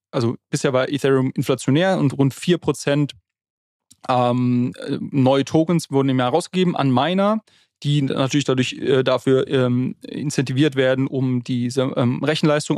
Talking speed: 135 wpm